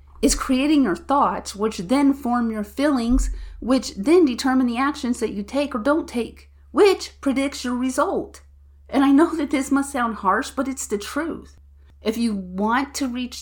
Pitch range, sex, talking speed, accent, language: 190-265 Hz, female, 185 wpm, American, English